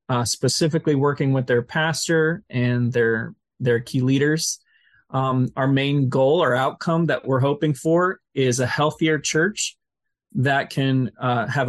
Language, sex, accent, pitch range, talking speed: English, male, American, 130-155 Hz, 150 wpm